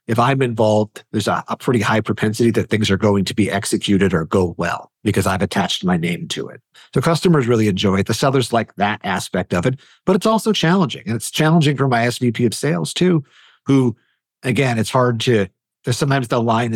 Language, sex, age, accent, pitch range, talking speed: English, male, 50-69, American, 100-135 Hz, 210 wpm